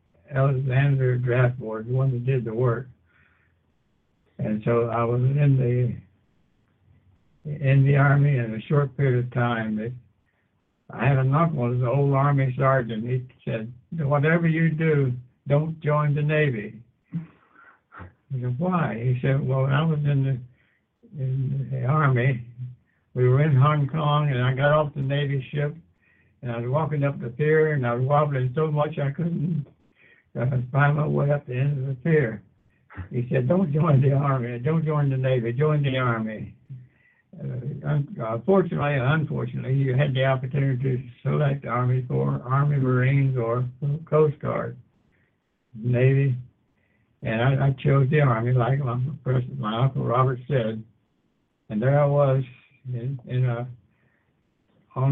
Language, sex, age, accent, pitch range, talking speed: English, male, 60-79, American, 120-145 Hz, 155 wpm